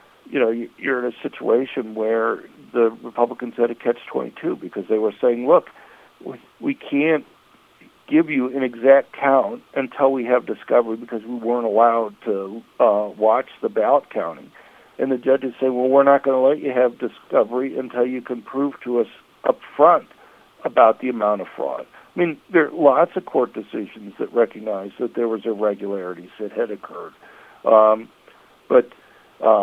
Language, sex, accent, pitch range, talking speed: English, male, American, 115-135 Hz, 170 wpm